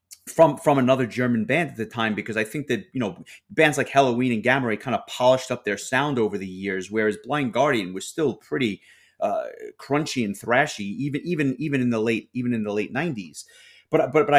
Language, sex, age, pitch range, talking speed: English, male, 30-49, 115-150 Hz, 220 wpm